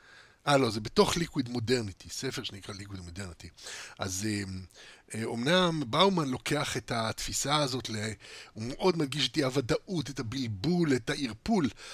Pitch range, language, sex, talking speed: 120-160 Hz, Hebrew, male, 135 wpm